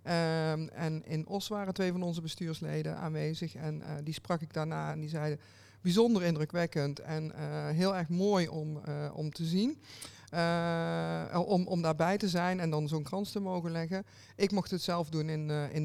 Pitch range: 150-170 Hz